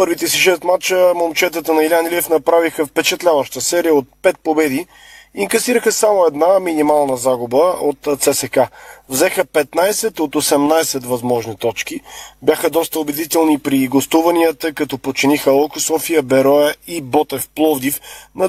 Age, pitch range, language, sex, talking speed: 30-49, 145-180 Hz, Bulgarian, male, 135 wpm